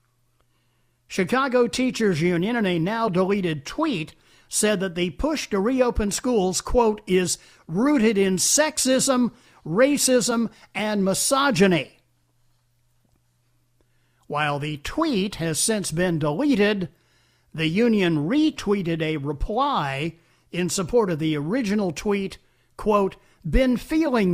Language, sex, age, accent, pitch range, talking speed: English, male, 50-69, American, 145-230 Hz, 105 wpm